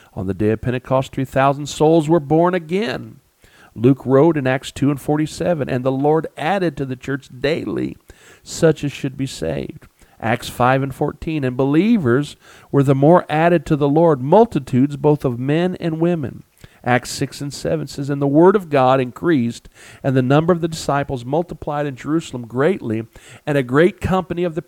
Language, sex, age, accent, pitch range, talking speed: English, male, 50-69, American, 125-160 Hz, 185 wpm